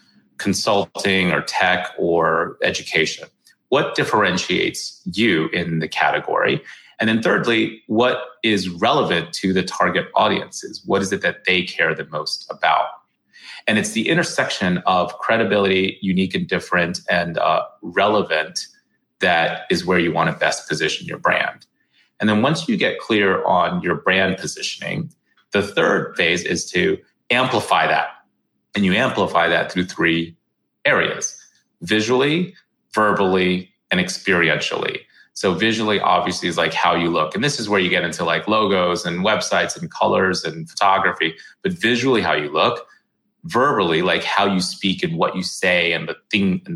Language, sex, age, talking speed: English, male, 30-49, 155 wpm